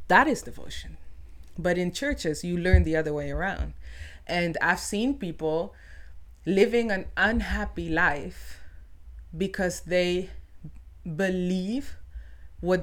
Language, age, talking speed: English, 20-39, 110 wpm